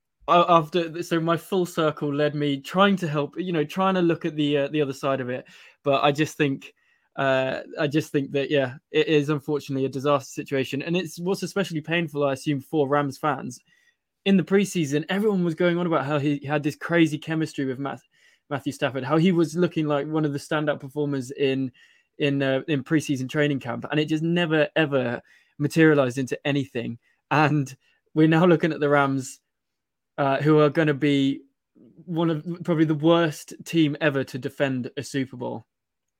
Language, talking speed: English, 190 wpm